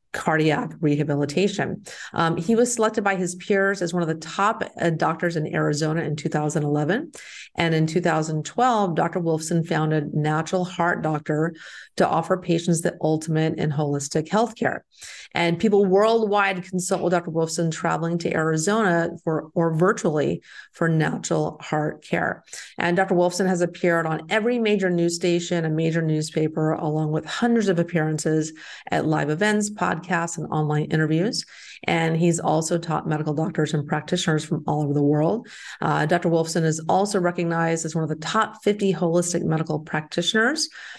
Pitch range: 155-190 Hz